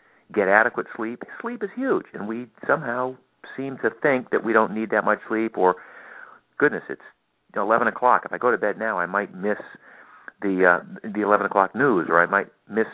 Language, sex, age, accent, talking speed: English, male, 50-69, American, 200 wpm